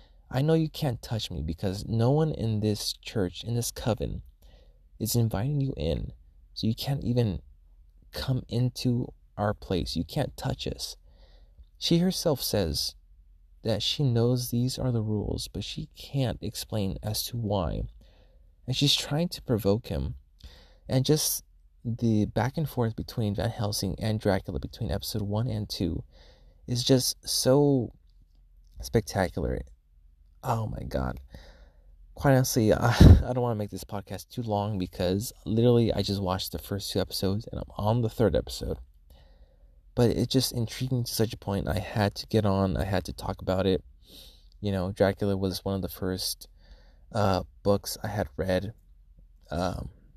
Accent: American